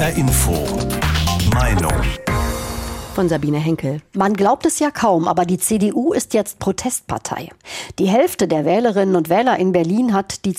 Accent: German